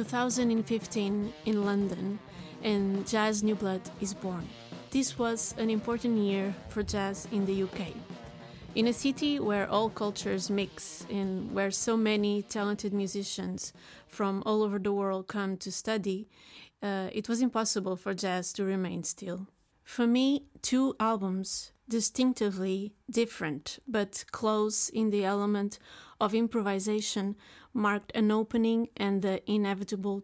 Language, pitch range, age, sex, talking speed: English, 195-225 Hz, 30-49, female, 135 wpm